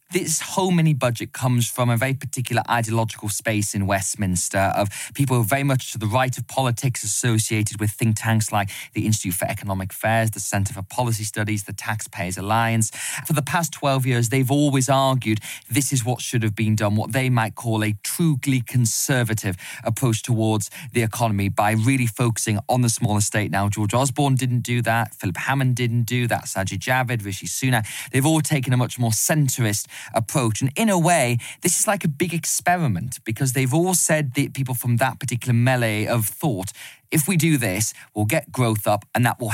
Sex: male